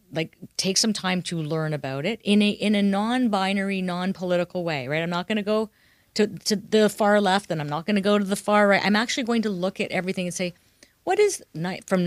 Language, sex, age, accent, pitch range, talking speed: English, female, 40-59, American, 160-205 Hz, 240 wpm